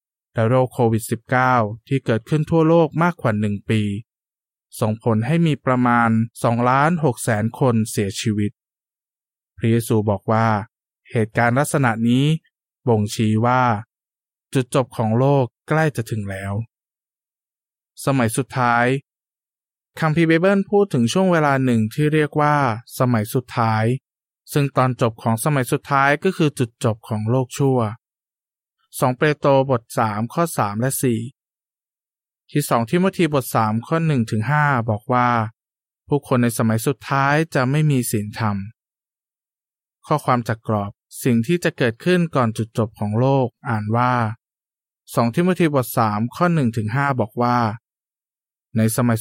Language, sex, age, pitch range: Thai, male, 20-39, 115-145 Hz